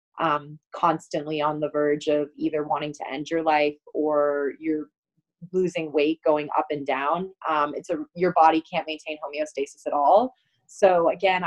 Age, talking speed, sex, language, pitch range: 20-39, 165 wpm, female, English, 155-185 Hz